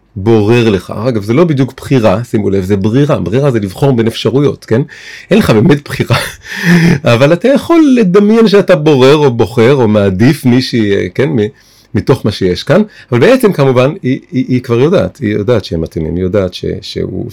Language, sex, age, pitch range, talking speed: Hebrew, male, 30-49, 100-125 Hz, 185 wpm